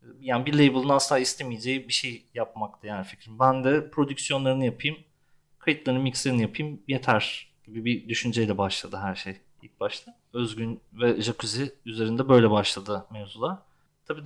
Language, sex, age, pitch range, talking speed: Turkish, male, 30-49, 115-145 Hz, 145 wpm